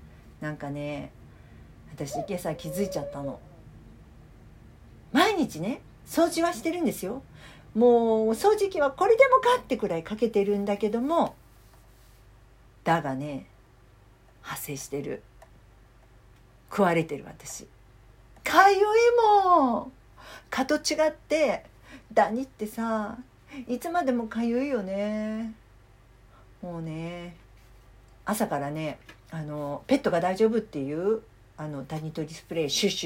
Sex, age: female, 50-69